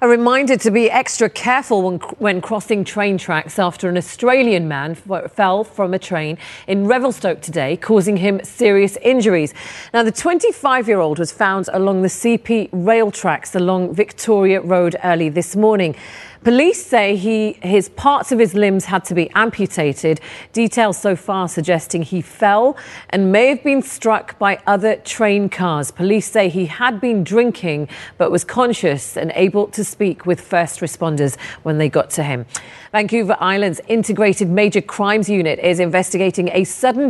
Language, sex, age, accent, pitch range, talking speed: English, female, 40-59, British, 180-225 Hz, 160 wpm